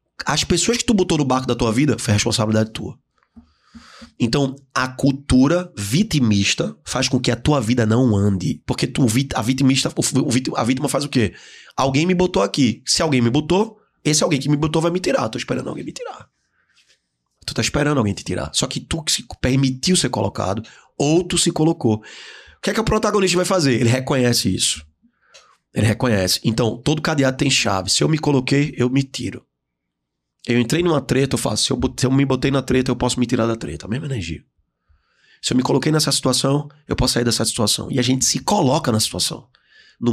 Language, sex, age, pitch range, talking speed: Portuguese, male, 20-39, 110-140 Hz, 205 wpm